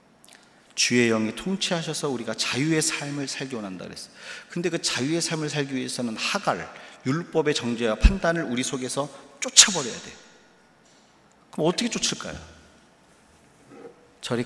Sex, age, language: male, 40-59, Korean